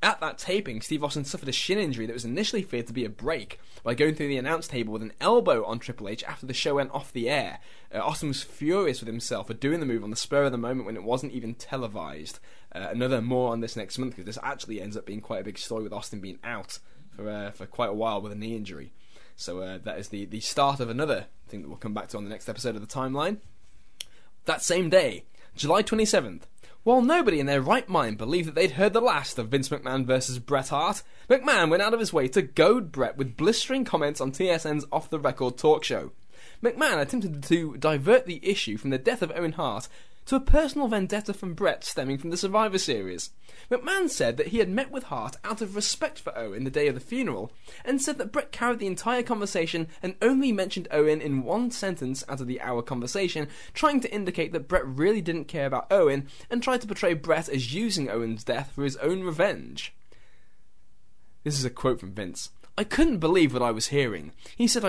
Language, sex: English, male